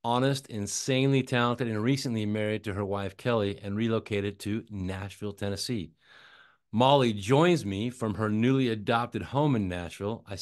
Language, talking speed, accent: English, 150 wpm, American